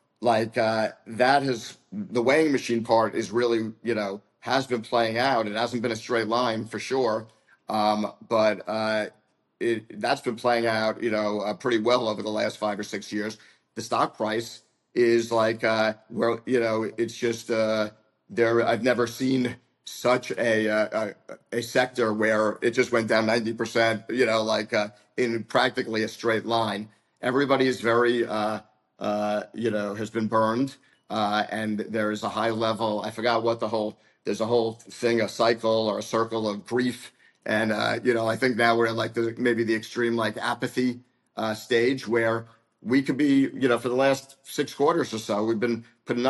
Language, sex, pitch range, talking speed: English, male, 110-120 Hz, 195 wpm